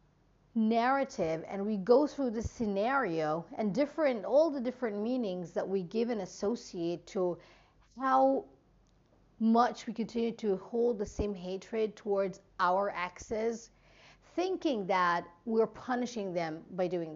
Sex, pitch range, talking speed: female, 185-255 Hz, 135 wpm